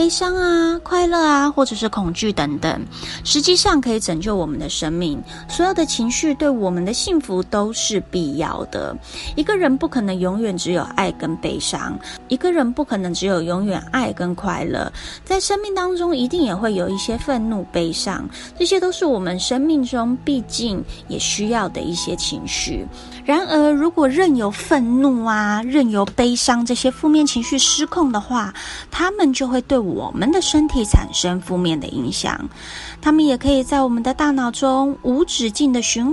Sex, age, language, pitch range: female, 20-39, Chinese, 195-295 Hz